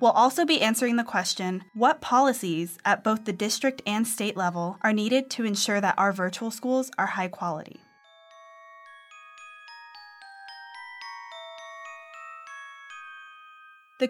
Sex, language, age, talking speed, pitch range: female, English, 20-39, 115 wpm, 175-235 Hz